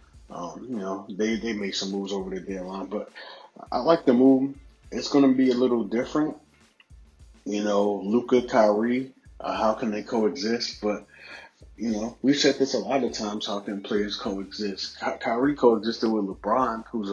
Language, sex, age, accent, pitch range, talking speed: English, male, 30-49, American, 100-125 Hz, 180 wpm